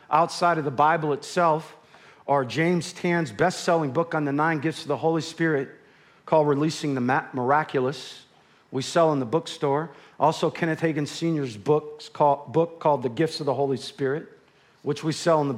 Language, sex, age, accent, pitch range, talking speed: English, male, 50-69, American, 150-190 Hz, 175 wpm